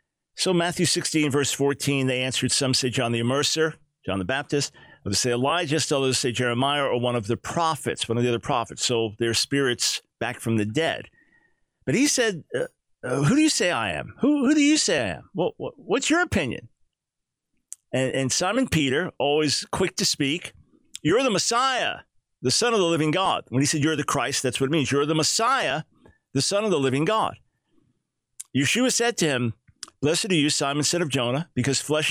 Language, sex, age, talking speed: English, male, 50-69, 200 wpm